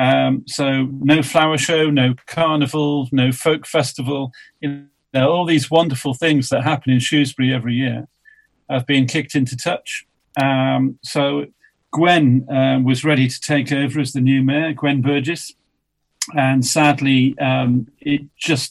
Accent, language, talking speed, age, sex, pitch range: British, English, 145 wpm, 40-59, male, 130-145 Hz